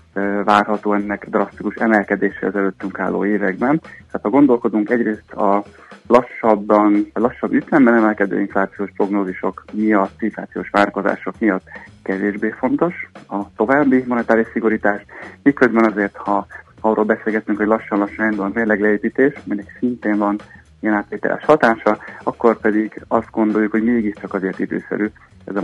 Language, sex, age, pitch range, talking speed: Hungarian, male, 30-49, 100-110 Hz, 130 wpm